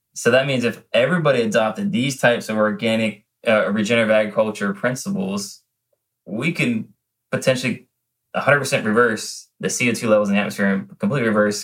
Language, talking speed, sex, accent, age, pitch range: English, 145 wpm, male, American, 20-39, 105-130 Hz